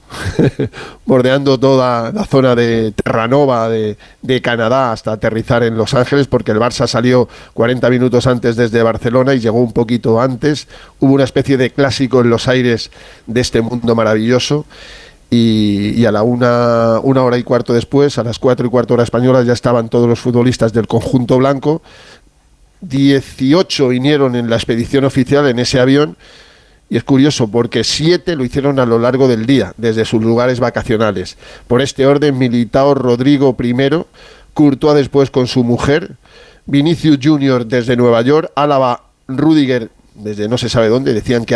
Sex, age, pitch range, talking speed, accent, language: male, 40-59, 115-135 Hz, 165 wpm, Spanish, Spanish